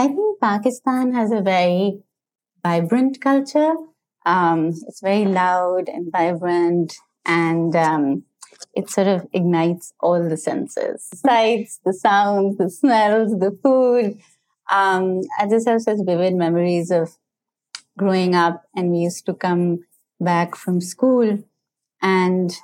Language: English